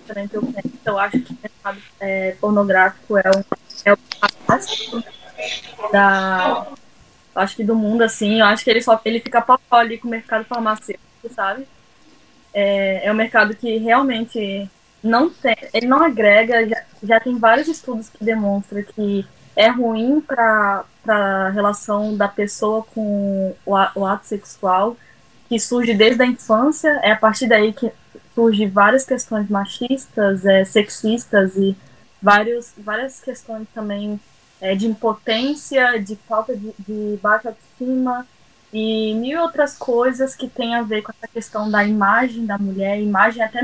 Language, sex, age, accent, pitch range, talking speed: Portuguese, female, 10-29, Brazilian, 205-250 Hz, 150 wpm